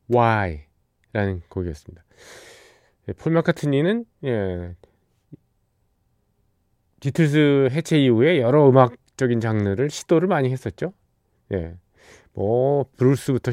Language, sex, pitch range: Korean, male, 100-135 Hz